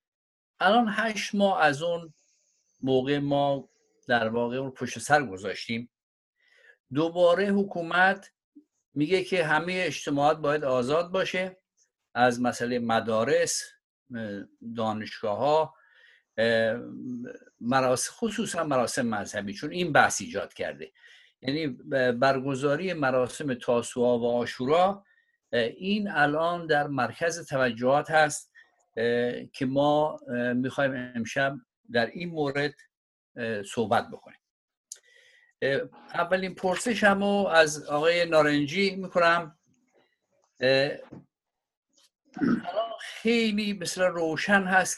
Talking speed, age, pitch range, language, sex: 90 wpm, 50-69, 130-190 Hz, Persian, male